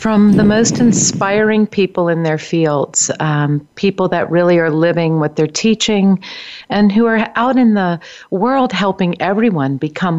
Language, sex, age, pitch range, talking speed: English, female, 50-69, 150-185 Hz, 160 wpm